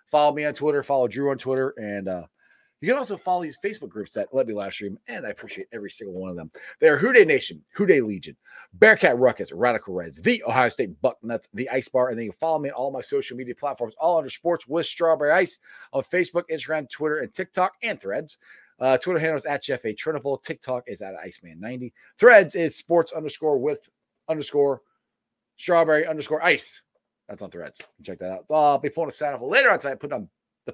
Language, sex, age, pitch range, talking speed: English, male, 30-49, 125-170 Hz, 220 wpm